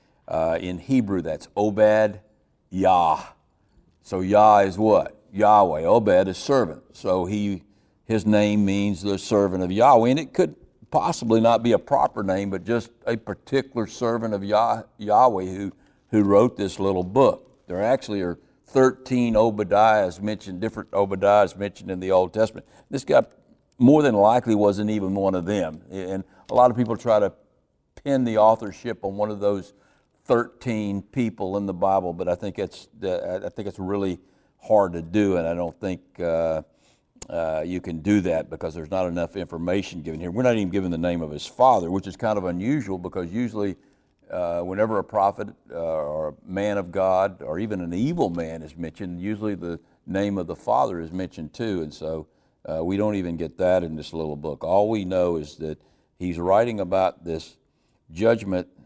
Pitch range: 85-105 Hz